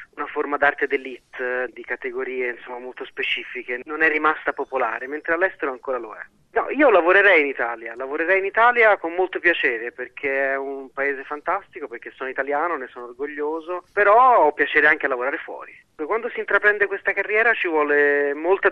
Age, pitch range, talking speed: 30-49, 140-175 Hz, 175 wpm